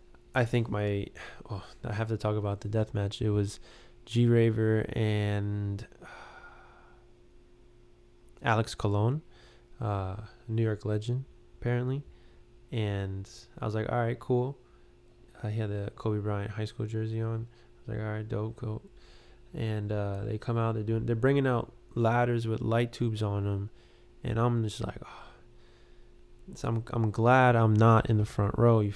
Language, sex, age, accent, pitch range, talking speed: English, male, 20-39, American, 105-120 Hz, 160 wpm